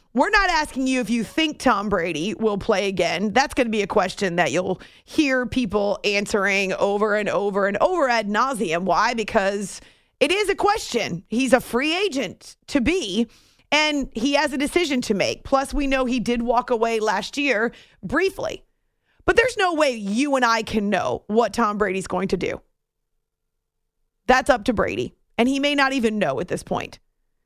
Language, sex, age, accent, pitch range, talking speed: English, female, 30-49, American, 200-270 Hz, 190 wpm